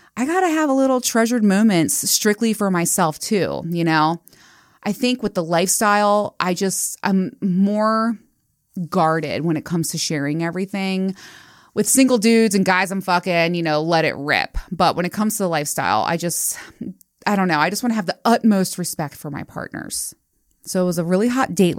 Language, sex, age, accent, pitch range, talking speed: English, female, 20-39, American, 160-220 Hz, 200 wpm